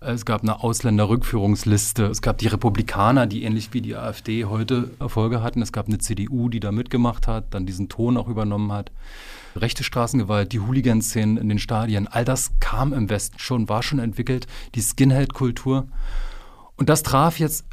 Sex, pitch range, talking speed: male, 105-130 Hz, 180 wpm